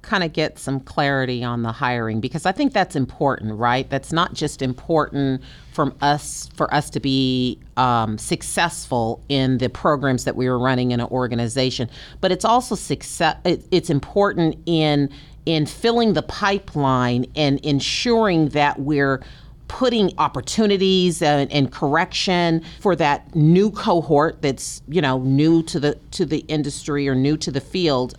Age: 40-59